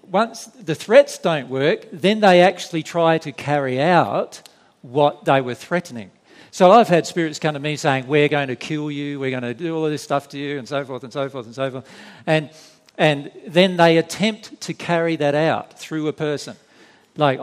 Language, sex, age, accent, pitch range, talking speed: English, male, 50-69, Australian, 140-180 Hz, 210 wpm